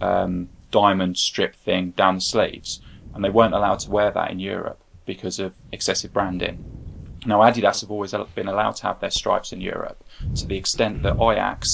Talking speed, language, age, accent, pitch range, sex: 190 wpm, English, 20-39, British, 90-105 Hz, male